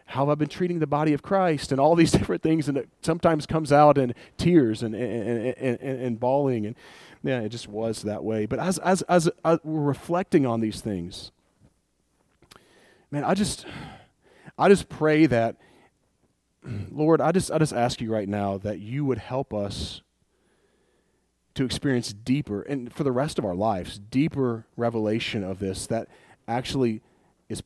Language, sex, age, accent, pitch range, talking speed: English, male, 40-59, American, 105-140 Hz, 175 wpm